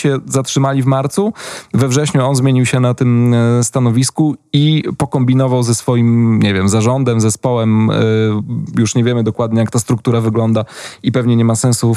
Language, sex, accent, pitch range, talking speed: Polish, male, native, 115-130 Hz, 165 wpm